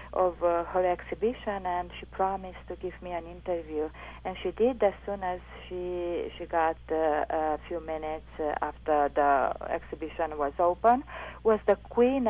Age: 50-69